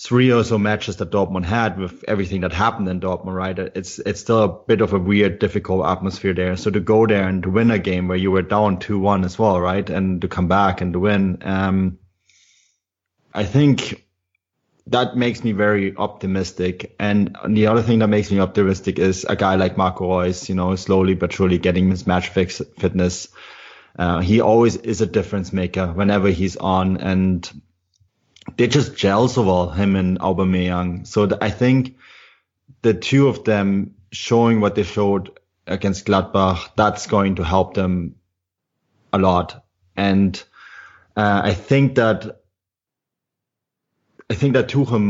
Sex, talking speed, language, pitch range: male, 175 wpm, English, 95-110 Hz